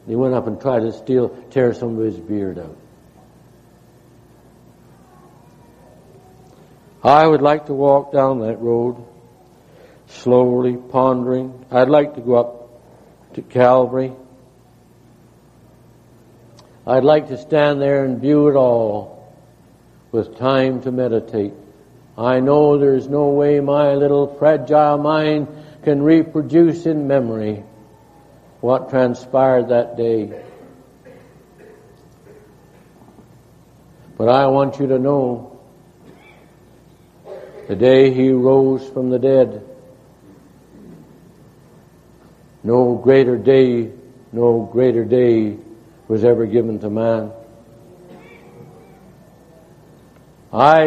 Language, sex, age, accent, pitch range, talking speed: English, male, 60-79, American, 120-140 Hz, 100 wpm